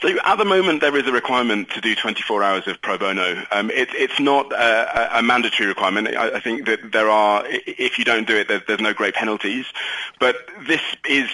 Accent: British